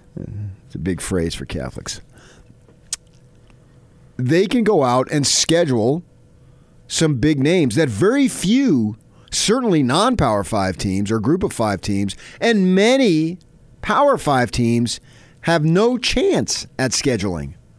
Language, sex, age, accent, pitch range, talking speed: English, male, 40-59, American, 120-185 Hz, 125 wpm